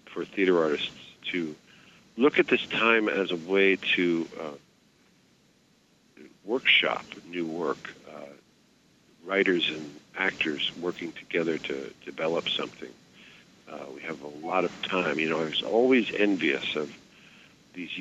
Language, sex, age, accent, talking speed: English, male, 50-69, American, 135 wpm